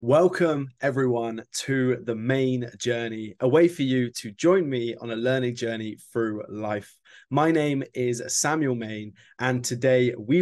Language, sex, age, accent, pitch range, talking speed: English, male, 20-39, British, 115-140 Hz, 155 wpm